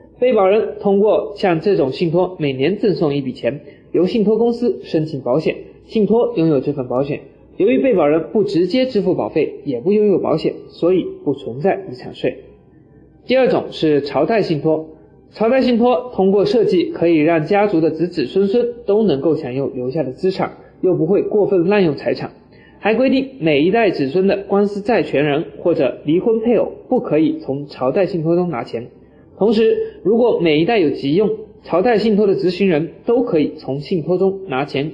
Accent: native